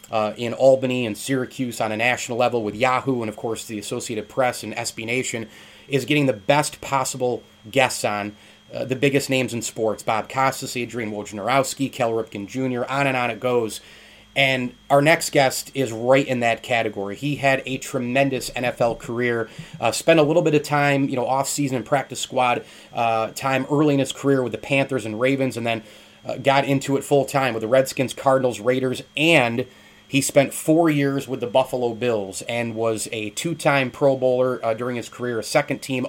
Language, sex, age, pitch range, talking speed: English, male, 30-49, 115-135 Hz, 200 wpm